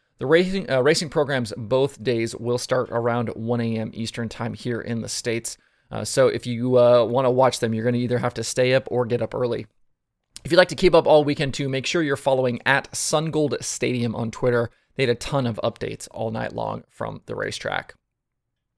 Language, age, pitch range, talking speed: English, 20-39, 120-145 Hz, 220 wpm